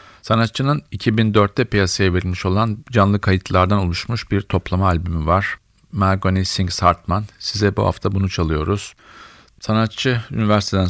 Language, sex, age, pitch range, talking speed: Turkish, male, 50-69, 90-105 Hz, 120 wpm